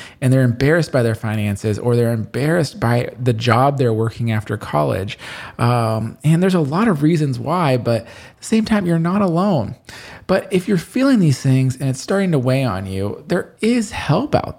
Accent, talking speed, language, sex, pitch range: American, 200 wpm, English, male, 115-160 Hz